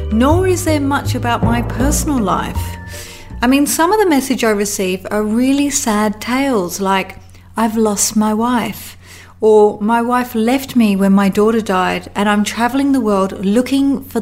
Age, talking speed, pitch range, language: 30-49, 175 wpm, 195-250 Hz, English